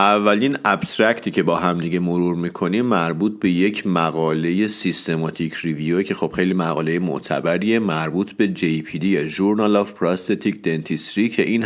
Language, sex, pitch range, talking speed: Persian, male, 85-105 Hz, 145 wpm